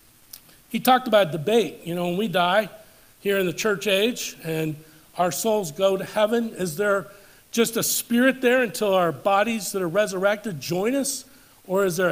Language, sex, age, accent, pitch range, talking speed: English, male, 50-69, American, 170-210 Hz, 185 wpm